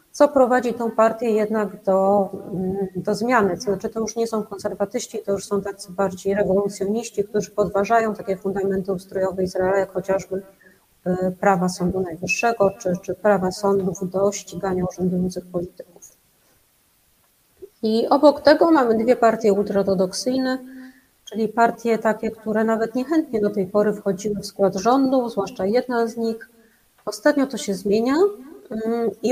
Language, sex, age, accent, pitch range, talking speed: Polish, female, 30-49, native, 195-225 Hz, 140 wpm